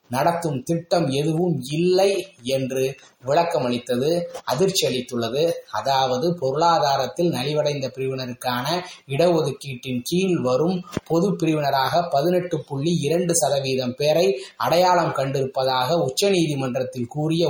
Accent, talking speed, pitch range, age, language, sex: native, 75 wpm, 130-175 Hz, 20-39, Tamil, male